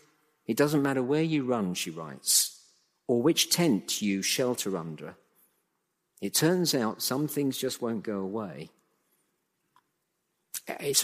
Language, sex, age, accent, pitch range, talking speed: English, male, 50-69, British, 110-150 Hz, 130 wpm